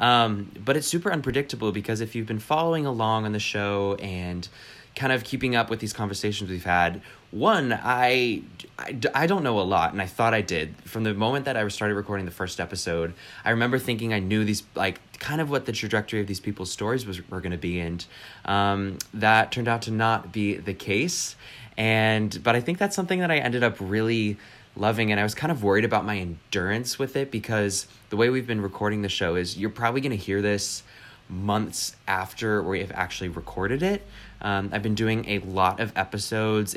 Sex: male